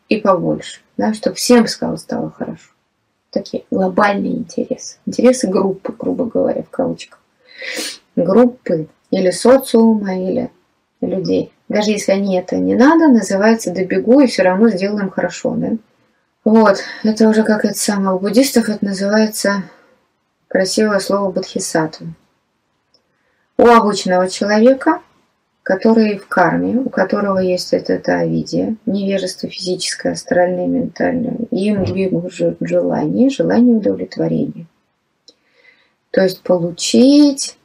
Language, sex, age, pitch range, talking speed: Russian, female, 20-39, 185-255 Hz, 115 wpm